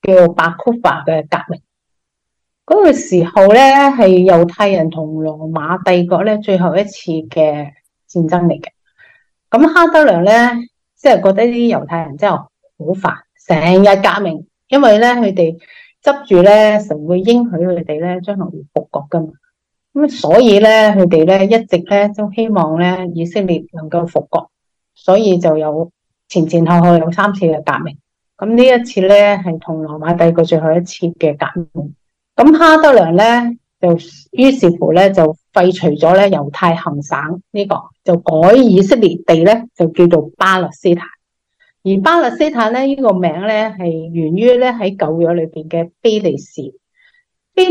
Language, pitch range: Chinese, 165-220 Hz